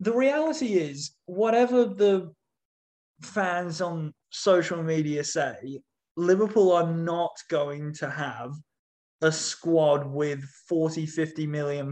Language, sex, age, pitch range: English, male, 20-39, 125-165 Hz